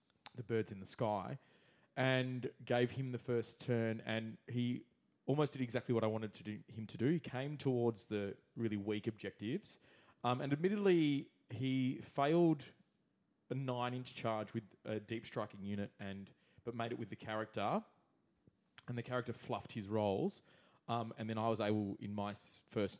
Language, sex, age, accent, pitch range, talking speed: English, male, 20-39, Australian, 100-120 Hz, 175 wpm